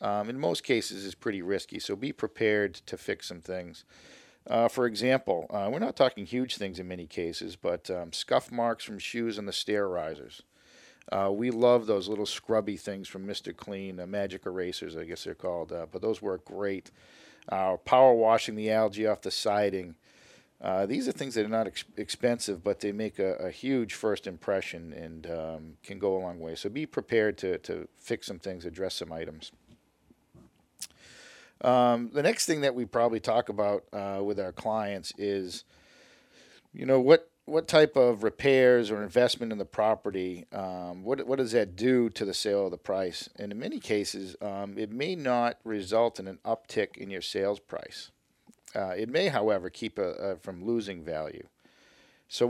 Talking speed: 190 wpm